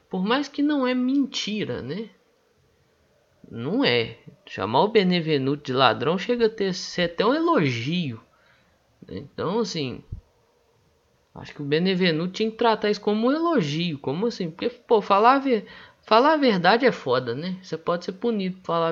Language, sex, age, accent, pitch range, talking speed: Portuguese, male, 20-39, Brazilian, 130-200 Hz, 160 wpm